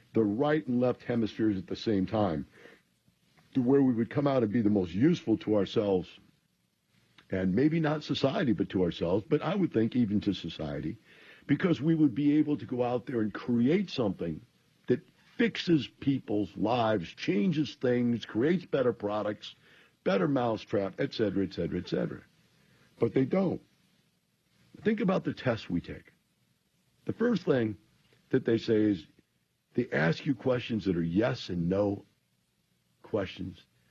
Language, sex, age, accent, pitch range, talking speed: English, male, 60-79, American, 100-150 Hz, 155 wpm